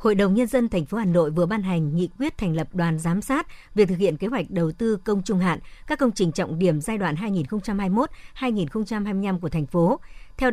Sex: male